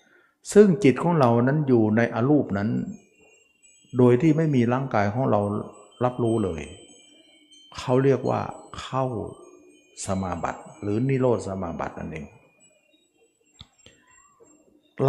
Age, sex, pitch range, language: 60-79, male, 105-140 Hz, Thai